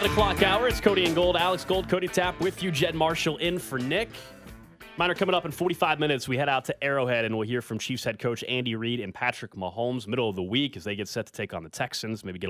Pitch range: 100-135 Hz